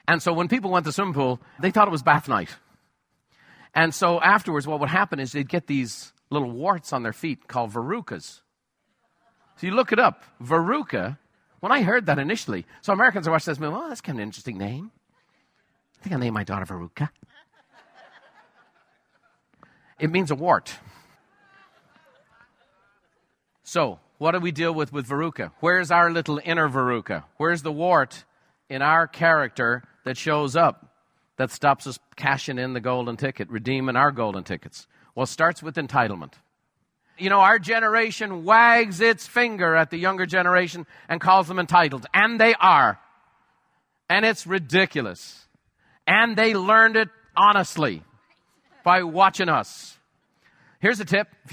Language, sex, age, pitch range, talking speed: English, male, 50-69, 140-185 Hz, 165 wpm